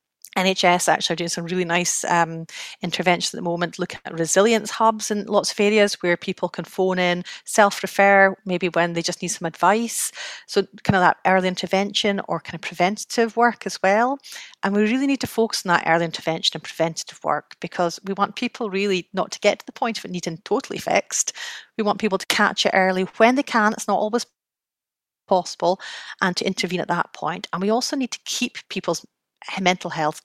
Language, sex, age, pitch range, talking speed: English, female, 30-49, 175-215 Hz, 205 wpm